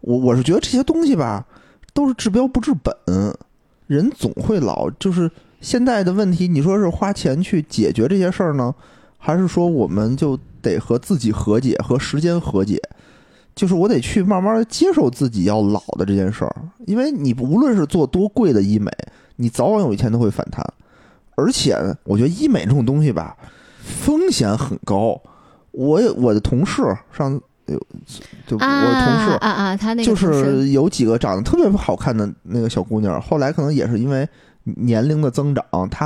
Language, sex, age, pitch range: Chinese, male, 20-39, 110-185 Hz